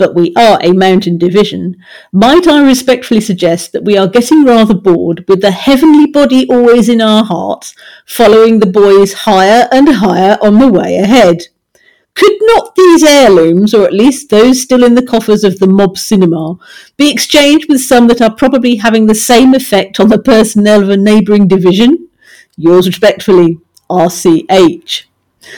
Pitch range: 180-245 Hz